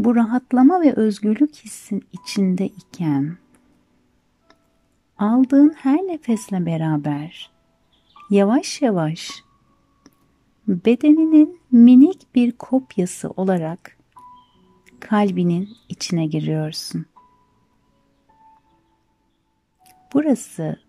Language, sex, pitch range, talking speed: Turkish, female, 165-260 Hz, 65 wpm